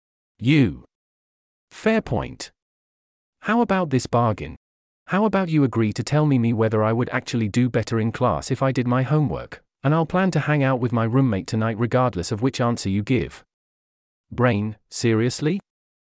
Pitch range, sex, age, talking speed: 85-140 Hz, male, 40-59, 170 wpm